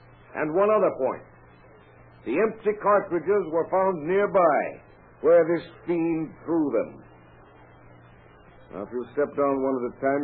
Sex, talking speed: male, 140 wpm